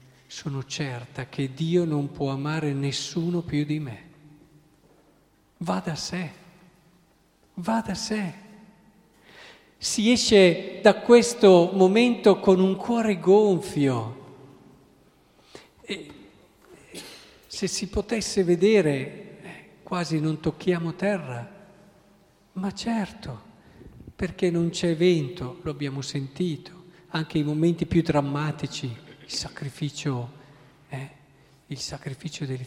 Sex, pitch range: male, 140-190 Hz